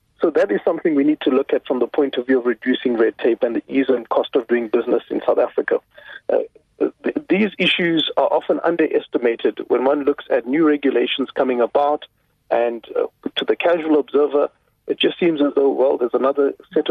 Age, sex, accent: 40-59, male, South African